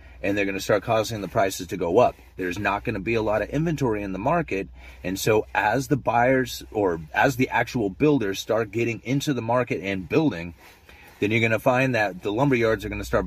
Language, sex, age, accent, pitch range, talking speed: English, male, 30-49, American, 85-115 Hz, 240 wpm